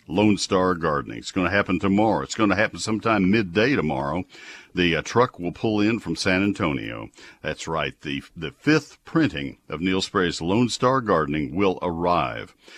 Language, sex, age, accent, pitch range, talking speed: English, male, 60-79, American, 85-110 Hz, 180 wpm